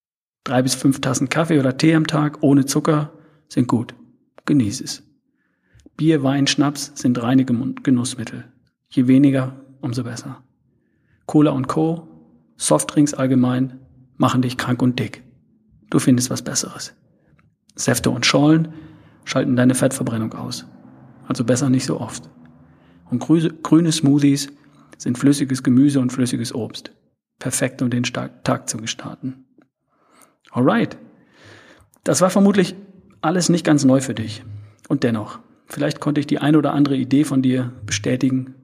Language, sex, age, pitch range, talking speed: German, male, 40-59, 125-145 Hz, 140 wpm